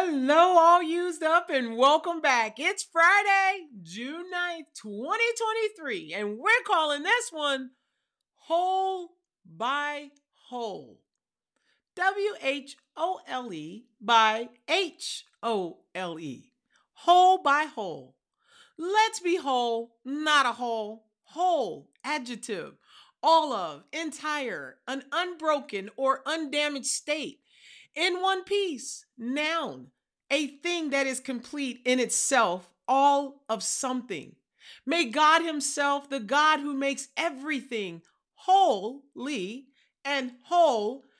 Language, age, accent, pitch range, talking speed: English, 40-59, American, 235-335 Hz, 100 wpm